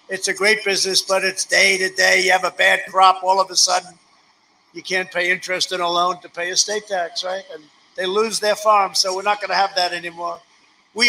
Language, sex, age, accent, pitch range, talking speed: English, male, 60-79, American, 190-225 Hz, 240 wpm